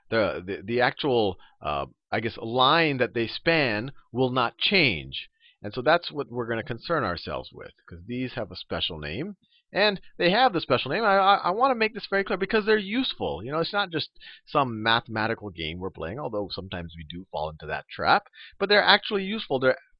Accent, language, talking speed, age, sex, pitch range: American, English, 215 wpm, 40-59, male, 110-165 Hz